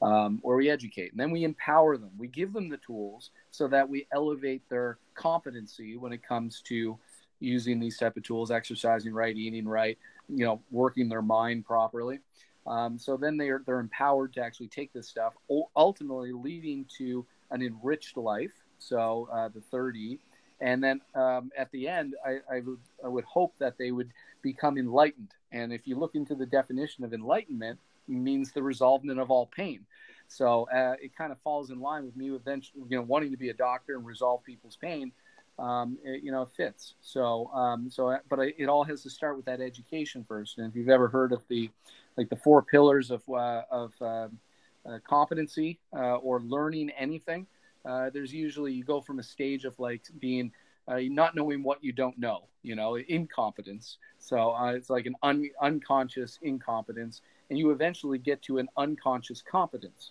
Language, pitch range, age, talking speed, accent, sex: English, 120-145 Hz, 30-49, 190 wpm, American, male